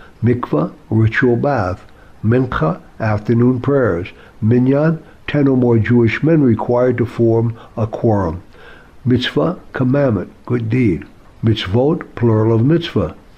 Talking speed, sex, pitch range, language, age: 110 wpm, male, 110-125 Hz, English, 60-79